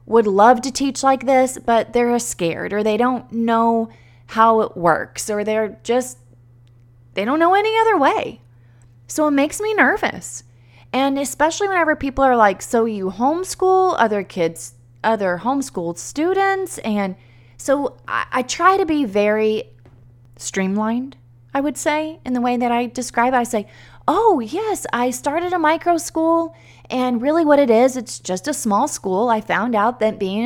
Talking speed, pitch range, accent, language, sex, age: 170 wpm, 175-255 Hz, American, English, female, 20-39